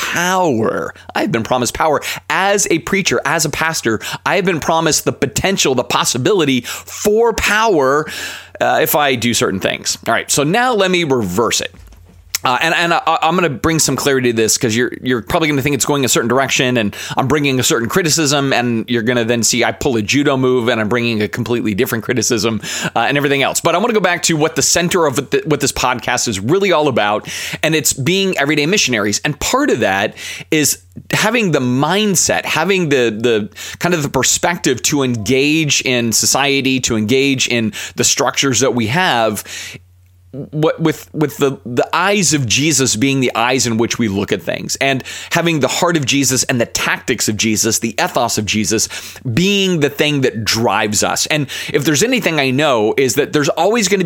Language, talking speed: English, 210 wpm